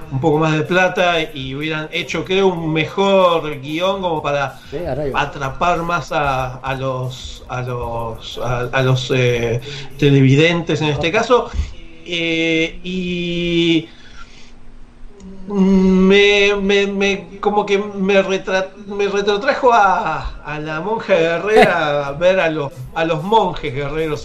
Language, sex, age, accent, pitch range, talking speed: English, male, 40-59, Argentinian, 140-190 Hz, 130 wpm